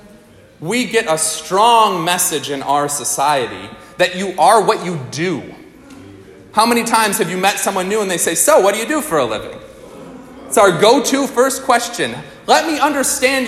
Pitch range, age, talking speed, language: 160-225 Hz, 30-49, 185 wpm, English